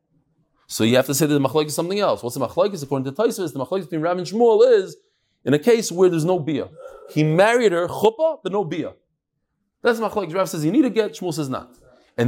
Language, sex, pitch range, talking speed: English, male, 150-215 Hz, 250 wpm